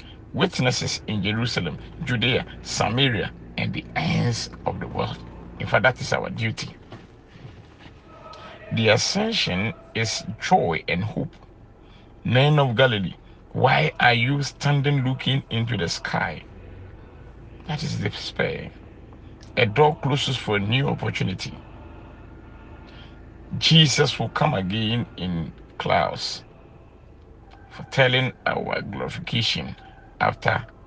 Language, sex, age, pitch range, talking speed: English, male, 50-69, 105-135 Hz, 105 wpm